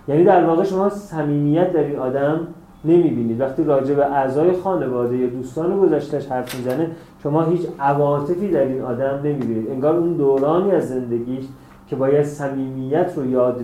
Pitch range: 130-165 Hz